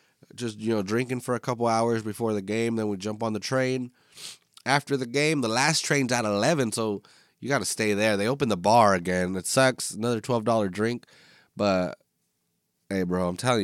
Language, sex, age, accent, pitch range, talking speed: English, male, 20-39, American, 100-125 Hz, 200 wpm